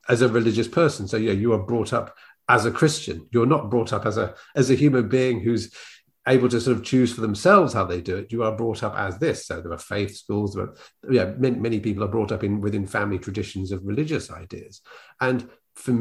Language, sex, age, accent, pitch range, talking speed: English, male, 40-59, British, 105-130 Hz, 240 wpm